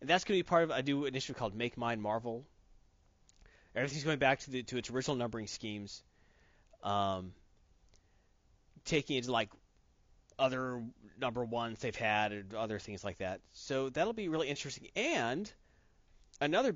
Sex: male